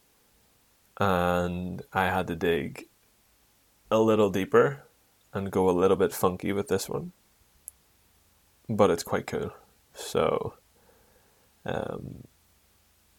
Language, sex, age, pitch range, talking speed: English, male, 20-39, 90-105 Hz, 105 wpm